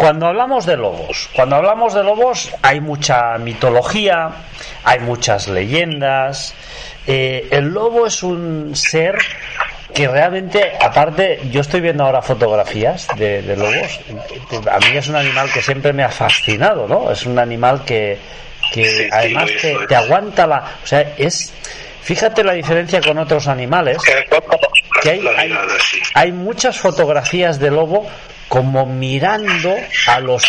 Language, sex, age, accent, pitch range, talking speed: Spanish, male, 40-59, Spanish, 125-185 Hz, 140 wpm